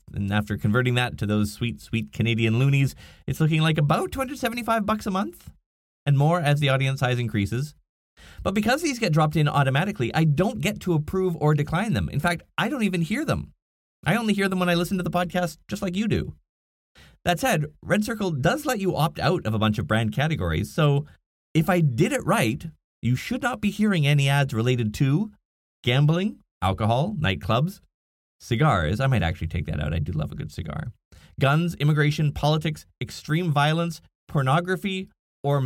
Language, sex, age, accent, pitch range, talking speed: English, male, 30-49, American, 115-180 Hz, 190 wpm